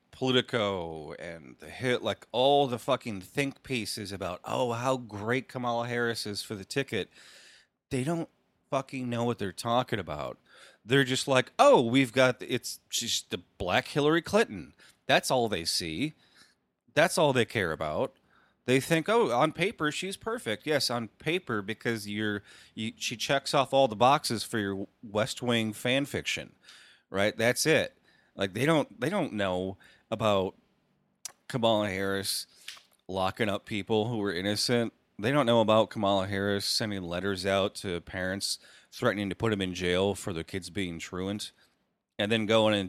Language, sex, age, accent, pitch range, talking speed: English, male, 30-49, American, 100-135 Hz, 165 wpm